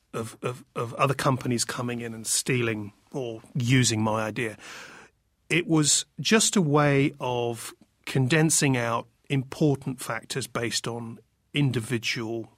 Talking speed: 125 wpm